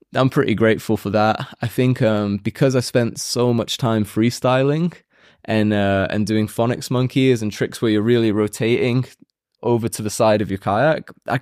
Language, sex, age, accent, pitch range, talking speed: English, male, 20-39, British, 105-125 Hz, 185 wpm